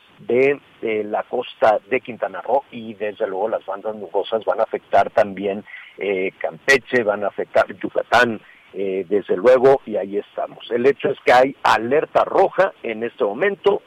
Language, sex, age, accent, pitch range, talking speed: Spanish, male, 50-69, Mexican, 110-175 Hz, 170 wpm